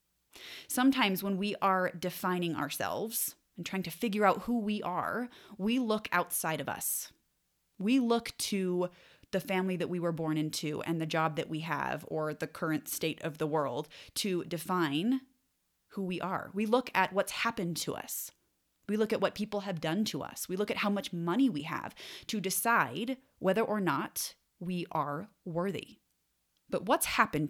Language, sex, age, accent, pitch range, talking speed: English, female, 20-39, American, 160-220 Hz, 180 wpm